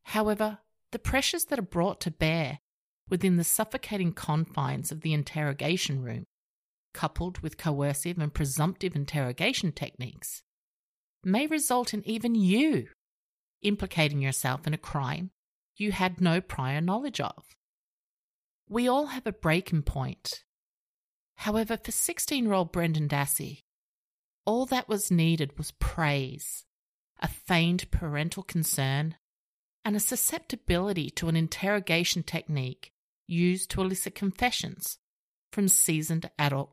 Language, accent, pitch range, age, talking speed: English, Australian, 150-215 Hz, 50-69, 120 wpm